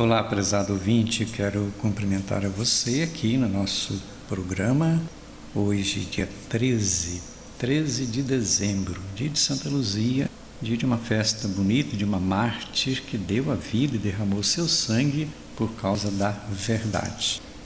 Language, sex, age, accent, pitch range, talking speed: Portuguese, male, 60-79, Brazilian, 100-130 Hz, 140 wpm